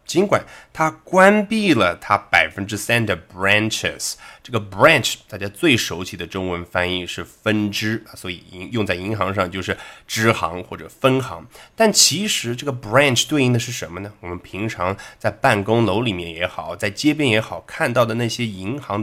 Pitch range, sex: 100-140 Hz, male